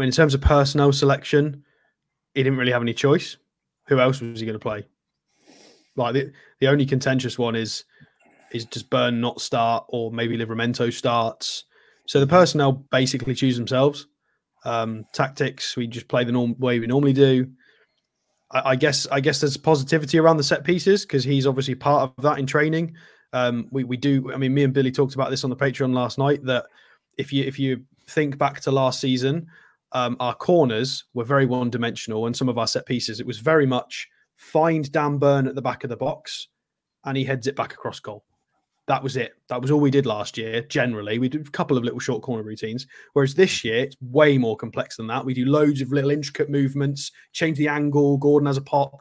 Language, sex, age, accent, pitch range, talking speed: English, male, 20-39, British, 125-145 Hz, 215 wpm